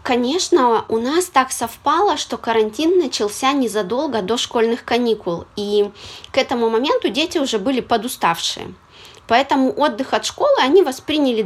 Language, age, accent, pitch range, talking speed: Russian, 20-39, native, 205-260 Hz, 135 wpm